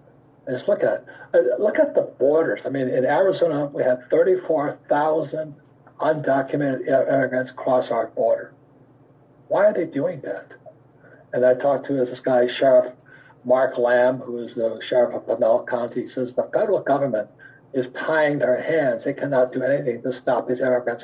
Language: English